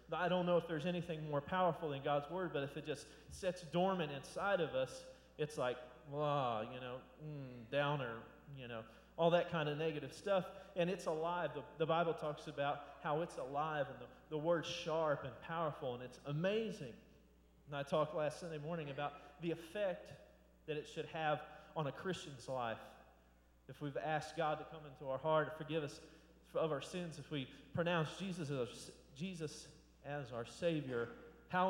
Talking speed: 190 wpm